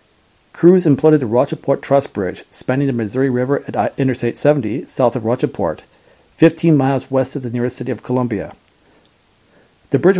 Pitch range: 120-150 Hz